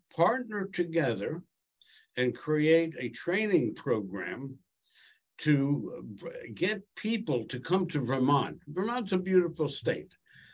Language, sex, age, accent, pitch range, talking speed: English, male, 60-79, American, 120-165 Hz, 100 wpm